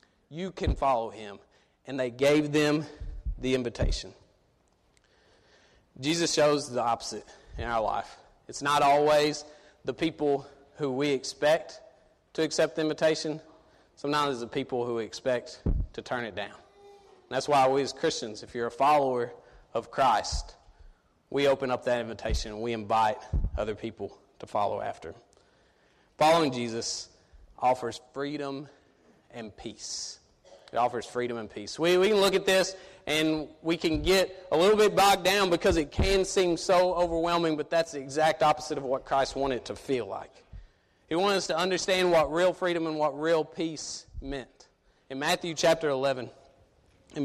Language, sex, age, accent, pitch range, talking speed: English, male, 30-49, American, 125-160 Hz, 165 wpm